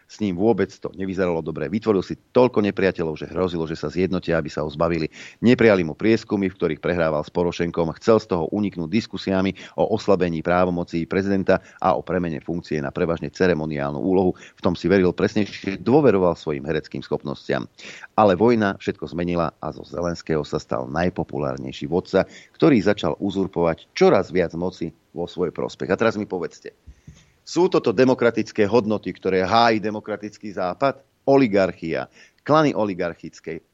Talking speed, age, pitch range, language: 155 wpm, 40-59, 85-105 Hz, Slovak